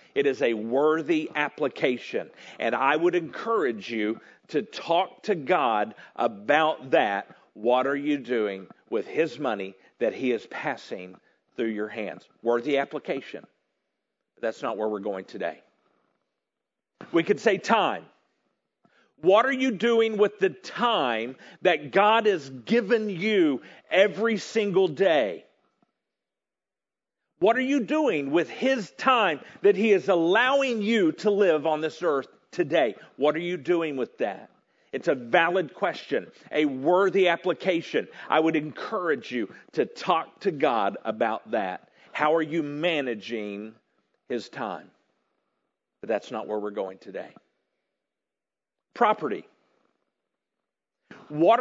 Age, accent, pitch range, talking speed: 50-69, American, 140-225 Hz, 130 wpm